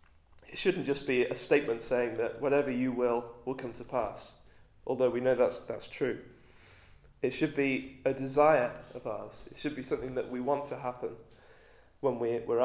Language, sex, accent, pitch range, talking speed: English, male, British, 120-145 Hz, 185 wpm